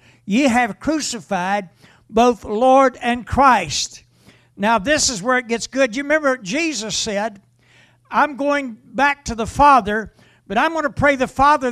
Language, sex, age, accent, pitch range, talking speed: English, male, 60-79, American, 210-290 Hz, 160 wpm